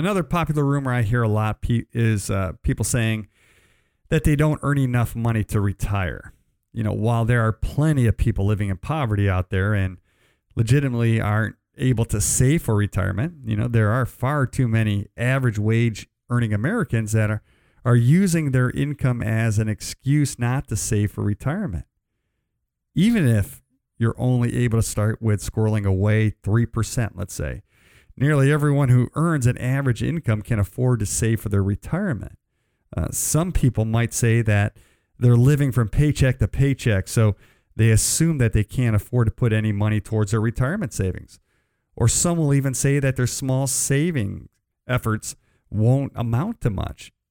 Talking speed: 165 wpm